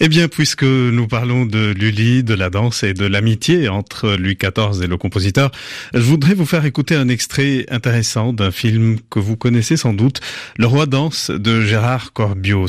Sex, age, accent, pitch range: male, 30-49, French, 110-140 Hz